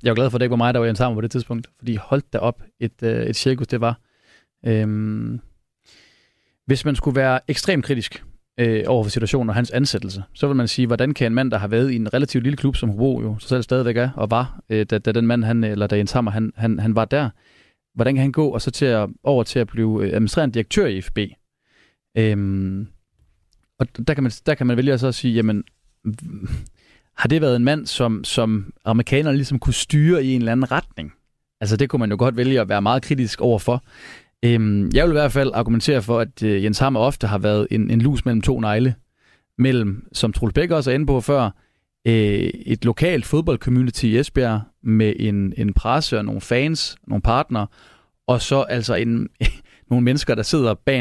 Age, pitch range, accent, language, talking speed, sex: 30-49, 110-130 Hz, native, Danish, 220 wpm, male